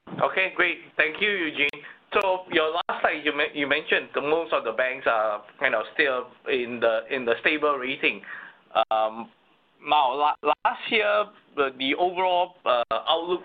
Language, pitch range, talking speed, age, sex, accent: English, 115-155 Hz, 160 wpm, 20-39, male, Malaysian